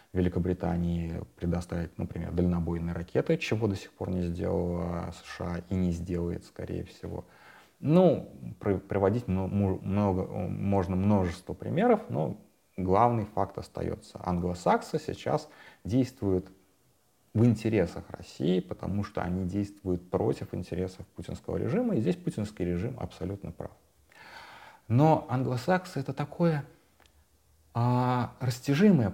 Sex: male